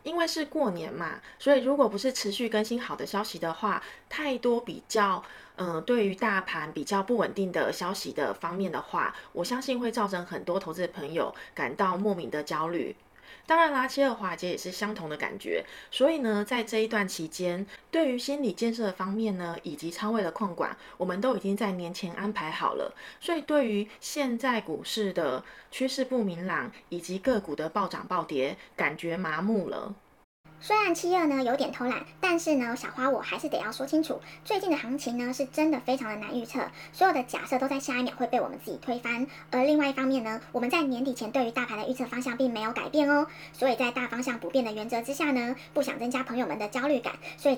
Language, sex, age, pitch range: Chinese, female, 20-39, 200-270 Hz